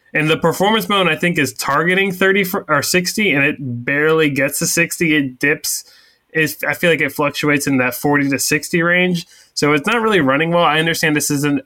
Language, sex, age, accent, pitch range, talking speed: English, male, 20-39, American, 130-160 Hz, 210 wpm